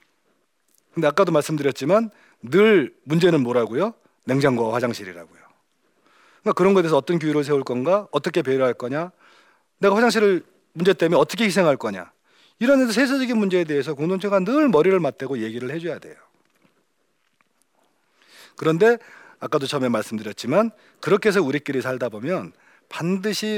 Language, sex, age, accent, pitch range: Korean, male, 40-59, native, 135-205 Hz